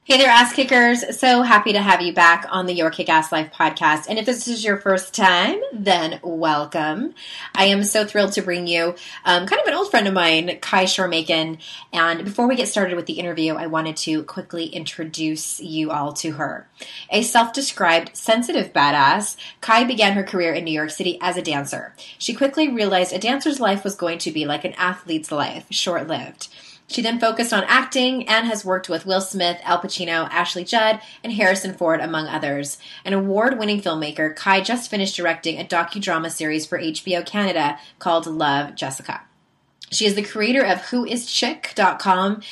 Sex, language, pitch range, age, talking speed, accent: female, English, 165-210 Hz, 20-39, 190 wpm, American